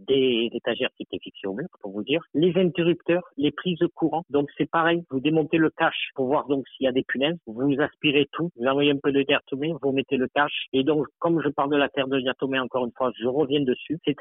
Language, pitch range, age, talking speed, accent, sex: French, 125-155 Hz, 50-69, 260 wpm, French, male